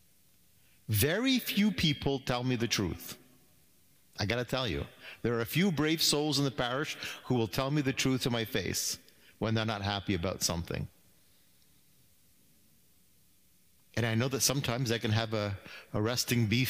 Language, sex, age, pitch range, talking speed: English, male, 50-69, 105-145 Hz, 170 wpm